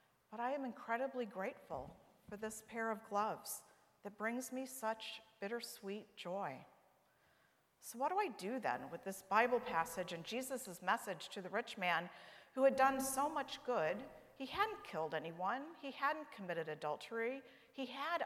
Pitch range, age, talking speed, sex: 205-260 Hz, 50-69, 160 wpm, female